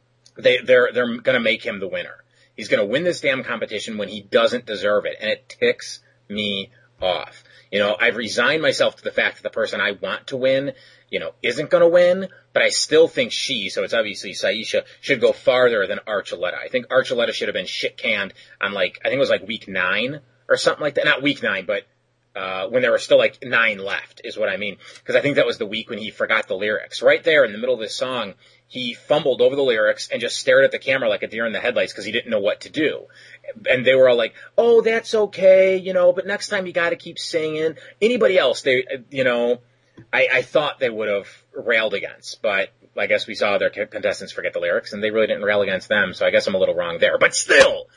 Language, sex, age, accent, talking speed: English, male, 30-49, American, 245 wpm